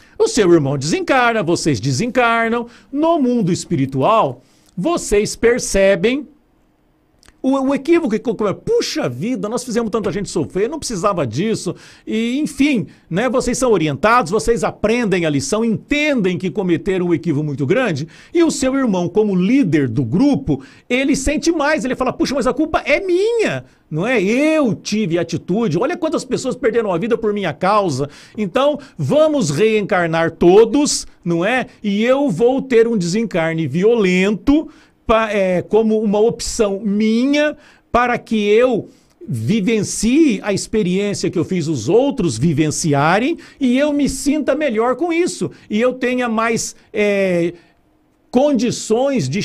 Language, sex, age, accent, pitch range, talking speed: Portuguese, male, 60-79, Brazilian, 185-260 Hz, 145 wpm